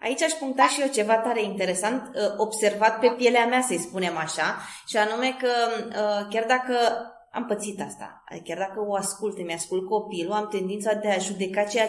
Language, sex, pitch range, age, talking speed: Romanian, female, 210-245 Hz, 20-39, 180 wpm